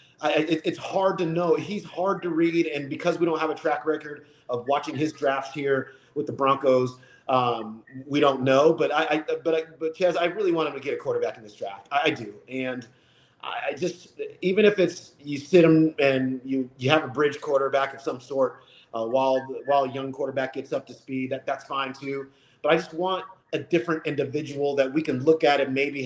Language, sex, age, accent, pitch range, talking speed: English, male, 30-49, American, 135-185 Hz, 230 wpm